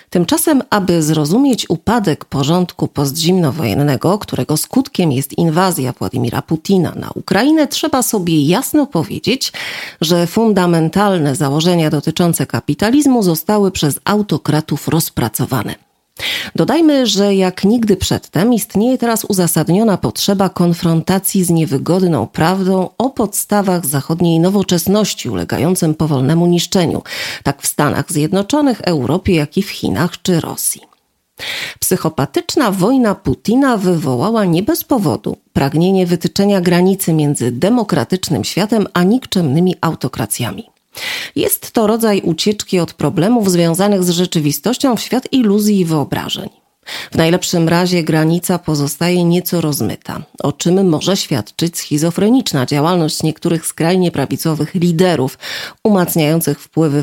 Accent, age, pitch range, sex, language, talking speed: native, 40-59, 155-205 Hz, female, Polish, 115 wpm